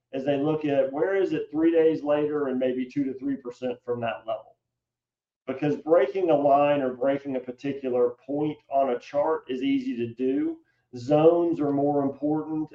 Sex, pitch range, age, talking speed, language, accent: male, 130-165 Hz, 40-59, 180 wpm, English, American